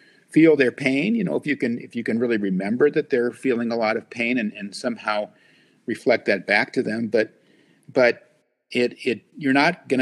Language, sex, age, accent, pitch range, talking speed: English, male, 50-69, American, 105-135 Hz, 210 wpm